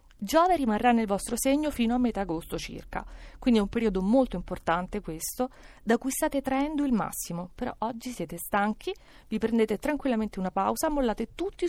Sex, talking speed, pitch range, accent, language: female, 175 wpm, 190-275 Hz, native, Italian